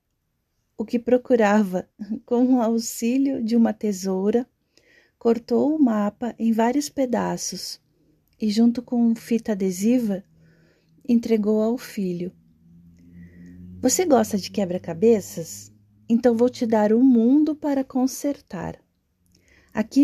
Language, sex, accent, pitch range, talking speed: Portuguese, female, Brazilian, 190-245 Hz, 110 wpm